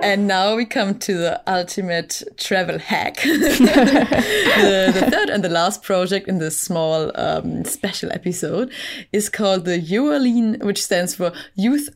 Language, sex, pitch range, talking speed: English, female, 170-240 Hz, 150 wpm